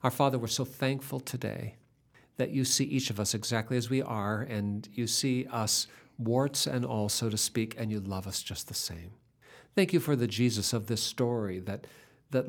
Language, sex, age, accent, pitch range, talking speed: English, male, 50-69, American, 110-135 Hz, 205 wpm